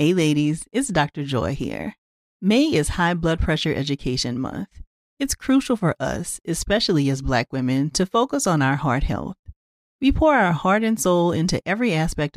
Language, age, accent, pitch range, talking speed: English, 40-59, American, 145-220 Hz, 175 wpm